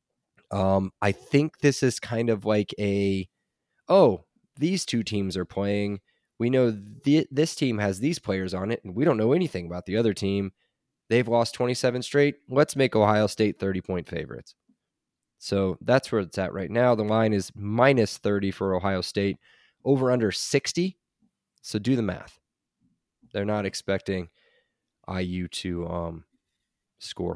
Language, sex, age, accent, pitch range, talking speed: English, male, 20-39, American, 95-125 Hz, 165 wpm